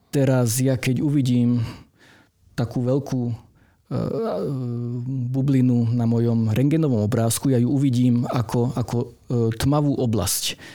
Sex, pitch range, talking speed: male, 115-130 Hz, 115 wpm